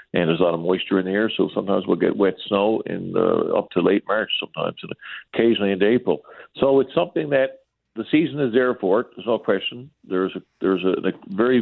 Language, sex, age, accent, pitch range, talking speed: English, male, 50-69, American, 95-120 Hz, 230 wpm